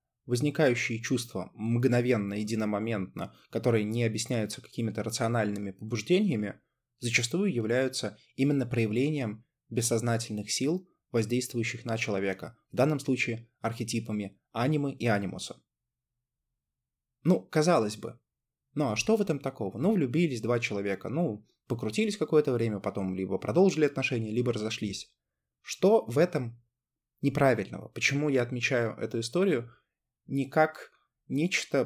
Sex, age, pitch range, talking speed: male, 20-39, 115-145 Hz, 115 wpm